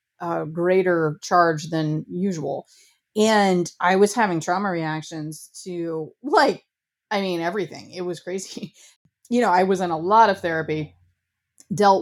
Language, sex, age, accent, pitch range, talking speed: English, female, 30-49, American, 175-225 Hz, 145 wpm